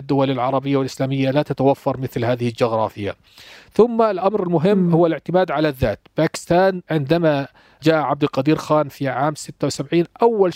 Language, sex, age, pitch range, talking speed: Arabic, male, 40-59, 130-155 Hz, 140 wpm